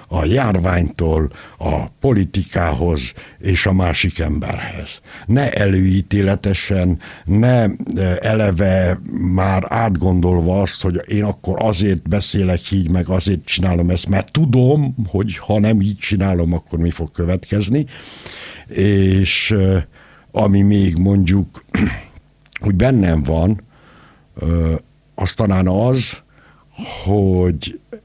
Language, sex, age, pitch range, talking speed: Hungarian, male, 60-79, 85-105 Hz, 100 wpm